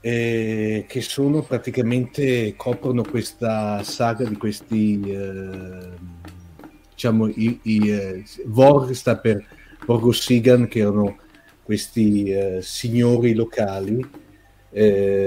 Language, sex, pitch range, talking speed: Italian, male, 100-120 Hz, 100 wpm